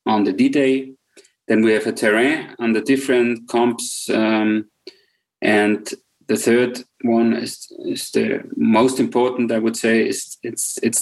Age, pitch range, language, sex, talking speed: 30-49, 115-130 Hz, English, male, 150 wpm